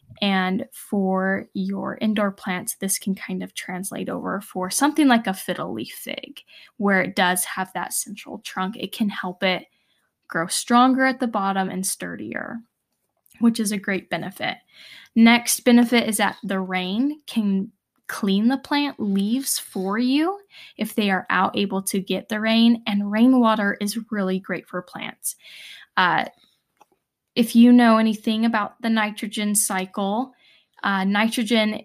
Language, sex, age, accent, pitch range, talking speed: English, female, 10-29, American, 190-230 Hz, 155 wpm